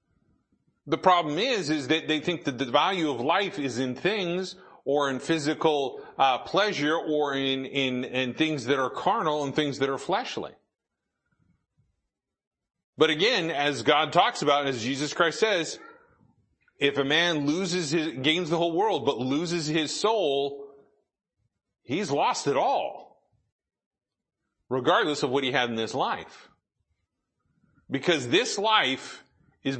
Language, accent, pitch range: English, American, 140-180 Hz